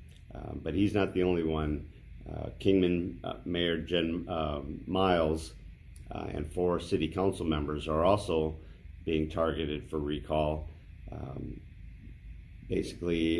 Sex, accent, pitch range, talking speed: male, American, 80-95 Hz, 125 wpm